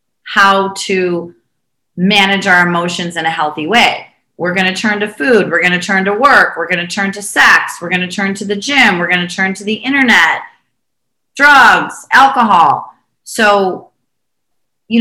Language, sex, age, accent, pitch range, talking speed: English, female, 30-49, American, 155-195 Hz, 180 wpm